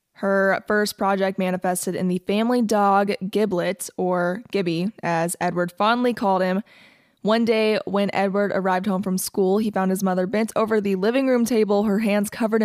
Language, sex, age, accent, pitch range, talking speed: English, female, 20-39, American, 185-215 Hz, 175 wpm